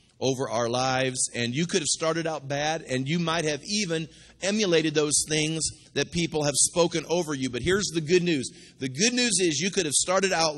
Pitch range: 110-155 Hz